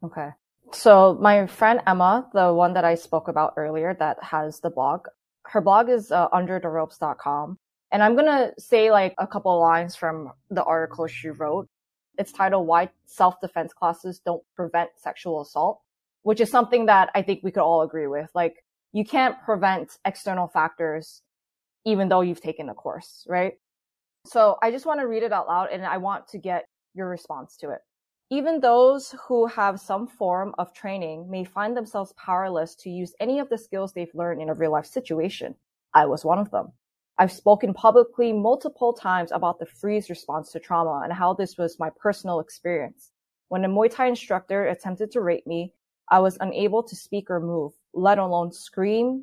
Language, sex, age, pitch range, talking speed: English, female, 20-39, 170-215 Hz, 190 wpm